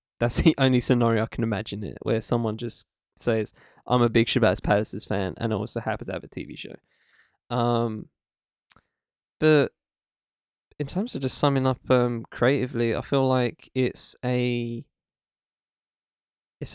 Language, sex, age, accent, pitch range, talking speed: English, male, 10-29, Australian, 115-135 Hz, 155 wpm